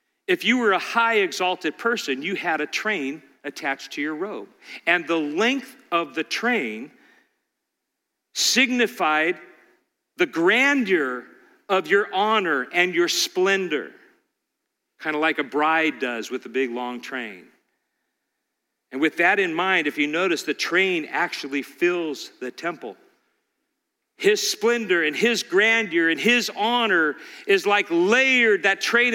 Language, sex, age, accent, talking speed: English, male, 50-69, American, 140 wpm